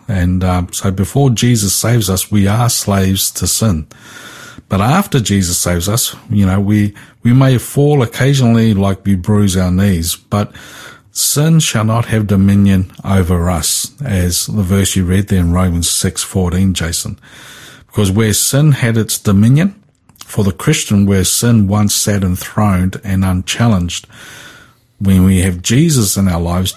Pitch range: 95-115 Hz